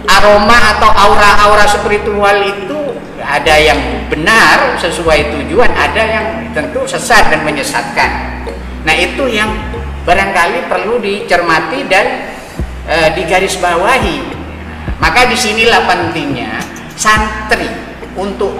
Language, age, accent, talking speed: Indonesian, 40-59, native, 95 wpm